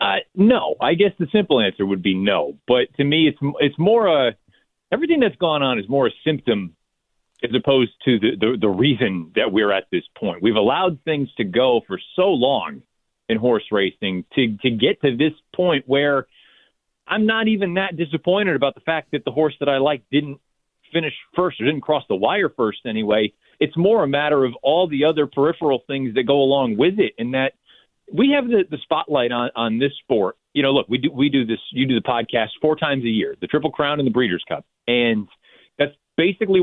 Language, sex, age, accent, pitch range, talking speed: English, male, 40-59, American, 130-180 Hz, 215 wpm